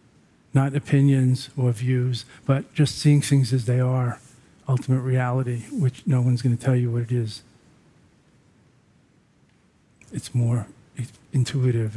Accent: American